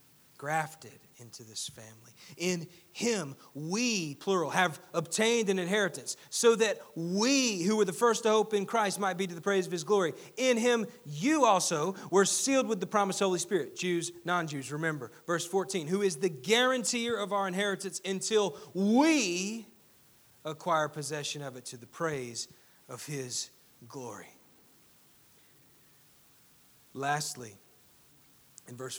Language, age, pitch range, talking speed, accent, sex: English, 40-59, 140-190 Hz, 145 wpm, American, male